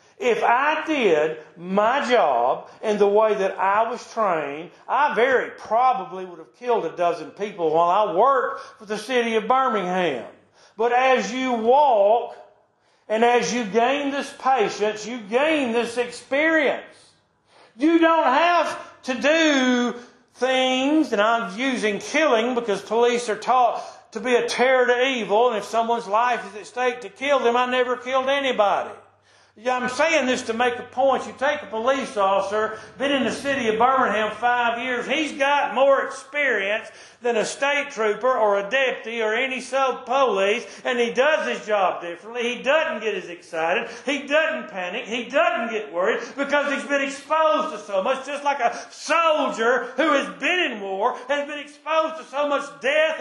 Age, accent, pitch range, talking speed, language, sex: 50-69, American, 220-280 Hz, 175 wpm, English, male